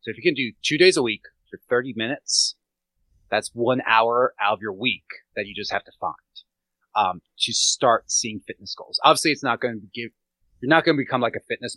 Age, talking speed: 30-49, 230 wpm